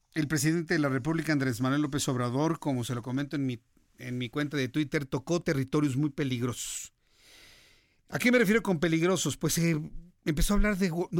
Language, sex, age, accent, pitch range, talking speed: Spanish, male, 50-69, Mexican, 140-185 Hz, 200 wpm